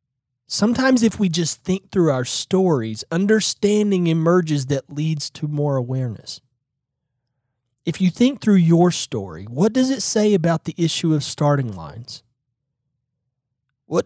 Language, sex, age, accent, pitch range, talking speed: English, male, 30-49, American, 125-165 Hz, 135 wpm